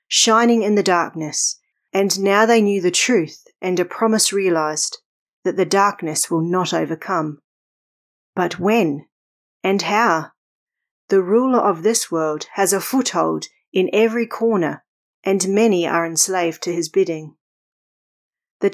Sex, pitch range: female, 165-215 Hz